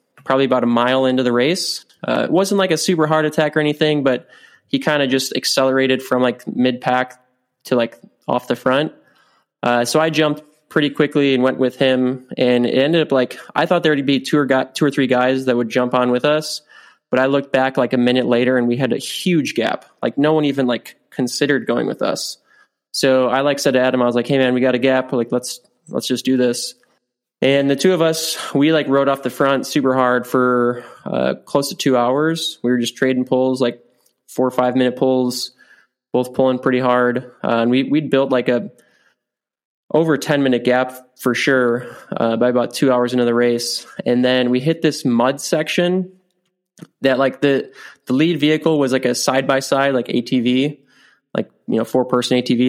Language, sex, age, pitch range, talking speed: English, male, 20-39, 125-150 Hz, 215 wpm